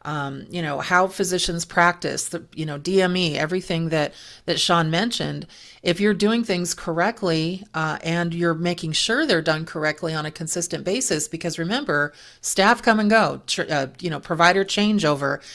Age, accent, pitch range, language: 40-59, American, 160-185 Hz, English